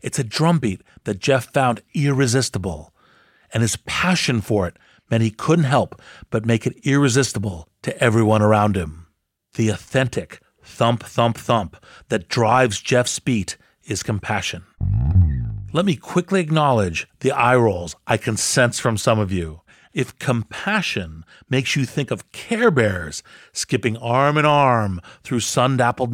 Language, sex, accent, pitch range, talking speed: English, male, American, 105-130 Hz, 140 wpm